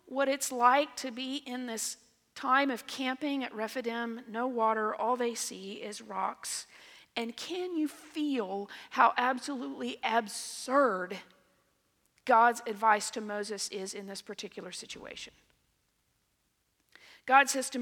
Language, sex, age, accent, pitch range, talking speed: English, female, 40-59, American, 225-280 Hz, 130 wpm